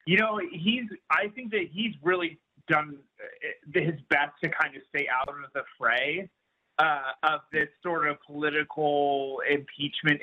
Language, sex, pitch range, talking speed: English, male, 145-175 Hz, 155 wpm